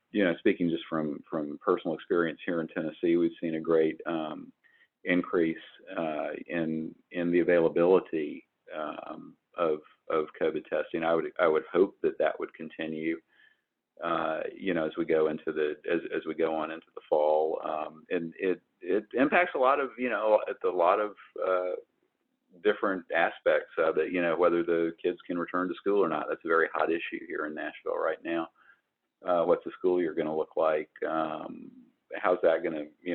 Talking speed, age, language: 195 wpm, 50-69, English